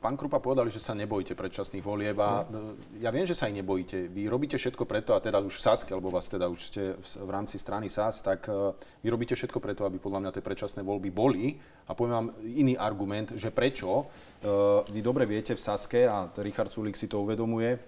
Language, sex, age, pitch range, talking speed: Slovak, male, 30-49, 100-120 Hz, 210 wpm